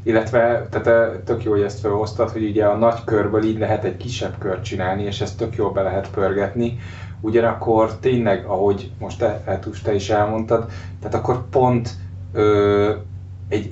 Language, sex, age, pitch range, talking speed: Hungarian, male, 30-49, 100-115 Hz, 175 wpm